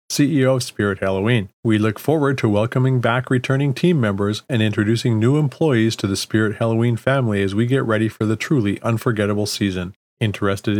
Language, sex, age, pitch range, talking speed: English, male, 40-59, 105-135 Hz, 180 wpm